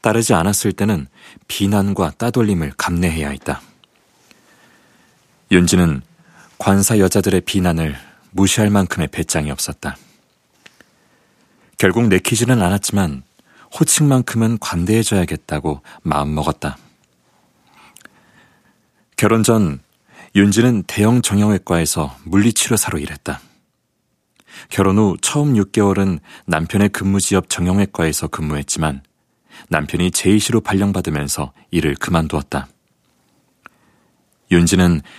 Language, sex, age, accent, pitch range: Korean, male, 40-59, native, 80-105 Hz